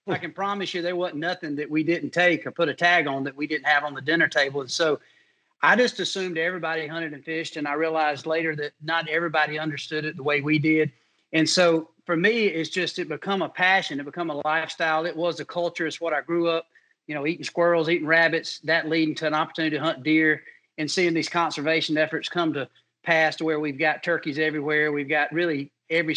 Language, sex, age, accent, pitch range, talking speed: English, male, 40-59, American, 150-170 Hz, 230 wpm